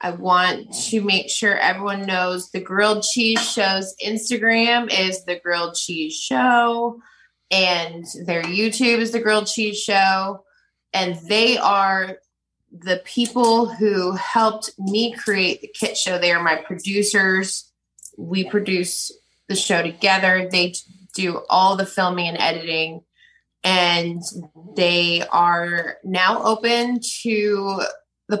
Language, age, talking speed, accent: English, 20-39, 125 wpm, American